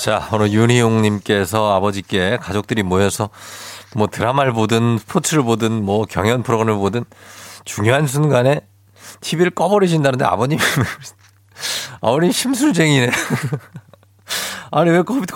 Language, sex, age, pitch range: Korean, male, 40-59, 105-145 Hz